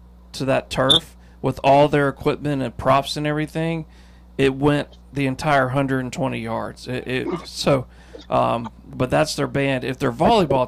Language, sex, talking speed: English, male, 155 wpm